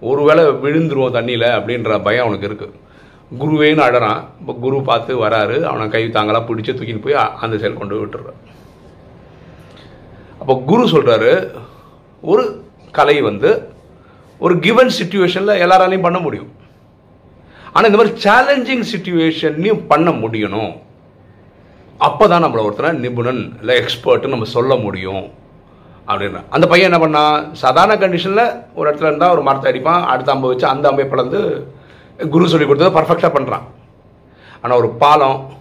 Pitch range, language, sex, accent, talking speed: 125-180 Hz, Tamil, male, native, 130 wpm